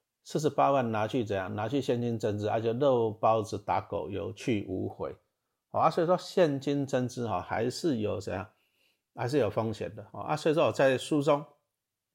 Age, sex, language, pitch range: 50-69, male, Chinese, 110-150 Hz